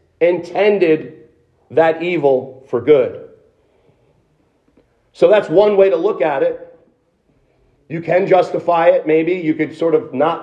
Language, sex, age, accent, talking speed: English, male, 40-59, American, 130 wpm